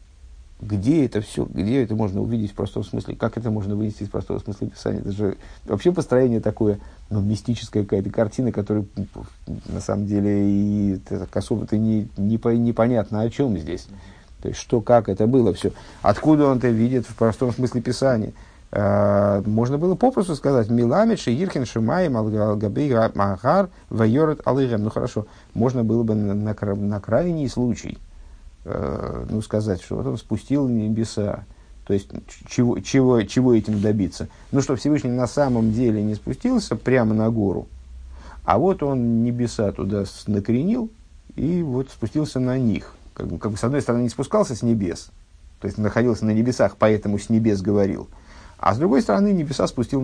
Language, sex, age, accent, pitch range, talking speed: Russian, male, 50-69, native, 100-125 Hz, 155 wpm